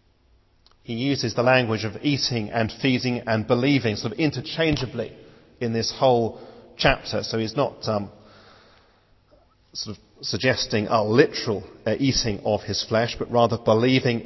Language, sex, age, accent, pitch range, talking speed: English, male, 40-59, British, 110-135 Hz, 145 wpm